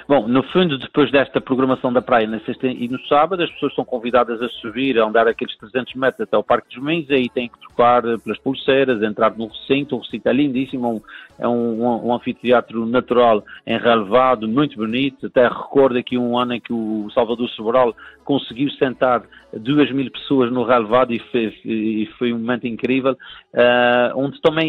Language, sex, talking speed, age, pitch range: Portuguese, male, 195 wpm, 50-69, 120-150 Hz